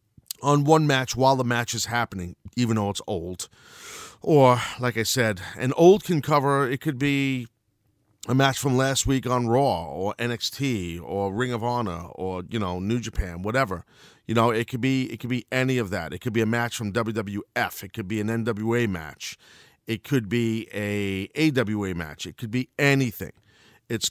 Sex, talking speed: male, 190 wpm